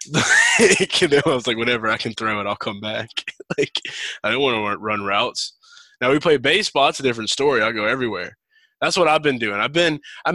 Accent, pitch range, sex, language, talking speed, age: American, 105-130 Hz, male, English, 215 wpm, 20-39